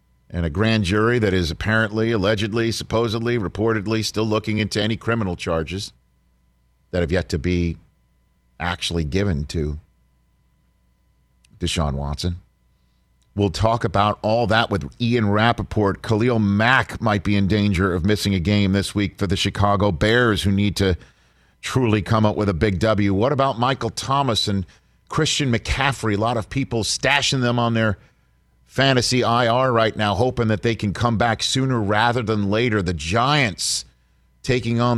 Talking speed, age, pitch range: 160 wpm, 50-69, 95-120 Hz